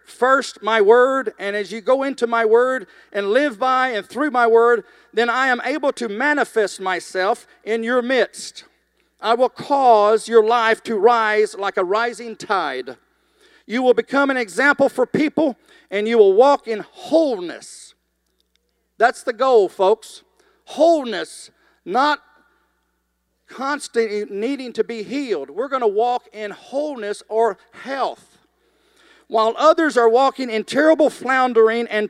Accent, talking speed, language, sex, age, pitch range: American, 145 wpm, English, male, 50-69, 225-295 Hz